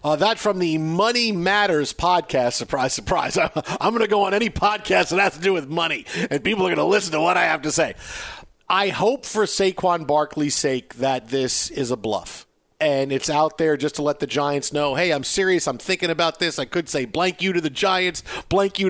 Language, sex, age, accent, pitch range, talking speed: English, male, 50-69, American, 150-200 Hz, 230 wpm